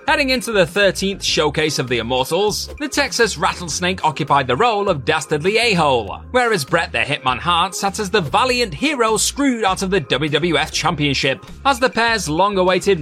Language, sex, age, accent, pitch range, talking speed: English, male, 20-39, British, 145-215 Hz, 170 wpm